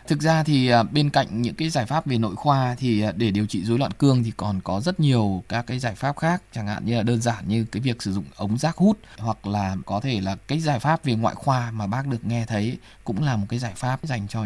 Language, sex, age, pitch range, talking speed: English, male, 20-39, 105-135 Hz, 280 wpm